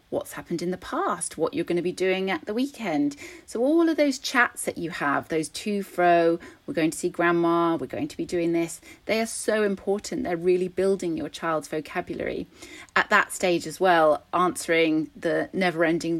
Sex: female